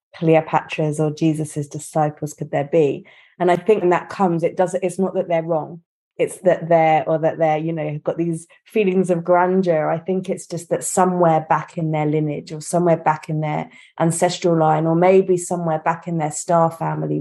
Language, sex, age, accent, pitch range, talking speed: English, female, 20-39, British, 160-185 Hz, 200 wpm